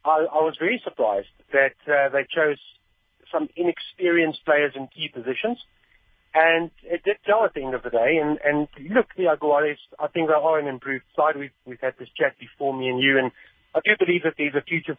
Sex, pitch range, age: male, 130-165 Hz, 40-59